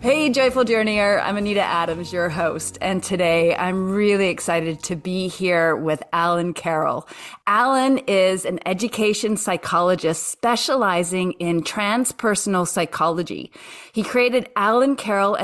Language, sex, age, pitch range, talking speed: English, female, 30-49, 180-240 Hz, 125 wpm